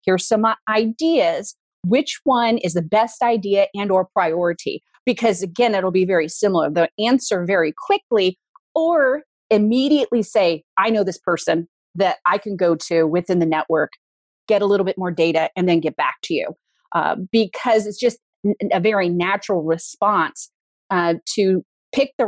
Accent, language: American, English